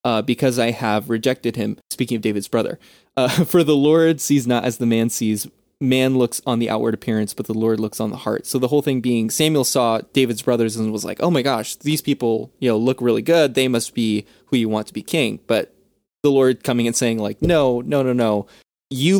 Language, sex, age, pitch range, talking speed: English, male, 20-39, 110-135 Hz, 240 wpm